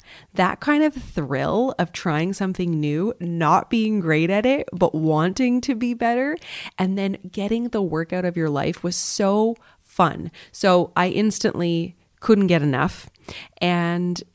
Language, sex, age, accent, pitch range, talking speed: English, female, 30-49, American, 160-220 Hz, 155 wpm